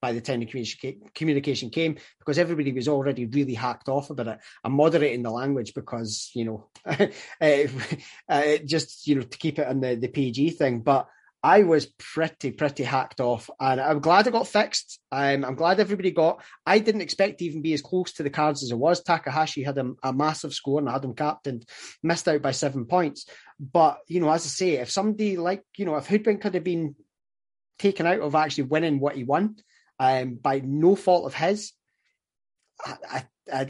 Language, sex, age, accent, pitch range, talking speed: English, male, 30-49, British, 130-155 Hz, 205 wpm